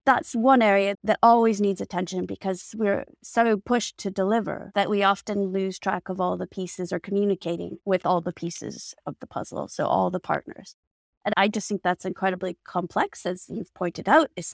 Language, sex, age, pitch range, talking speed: English, female, 30-49, 185-225 Hz, 195 wpm